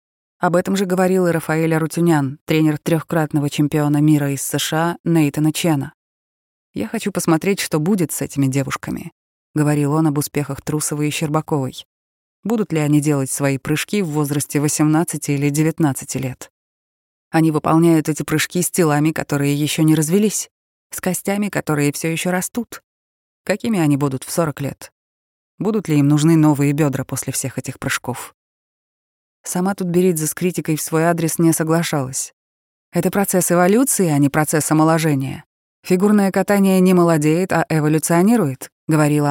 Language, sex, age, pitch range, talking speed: Russian, female, 20-39, 145-180 Hz, 150 wpm